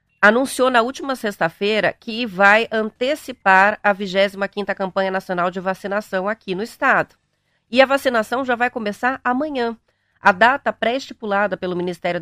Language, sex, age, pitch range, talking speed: Portuguese, female, 40-59, 180-235 Hz, 135 wpm